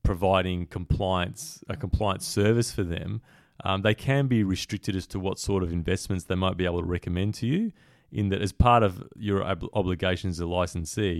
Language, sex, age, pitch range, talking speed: English, male, 30-49, 90-105 Hz, 195 wpm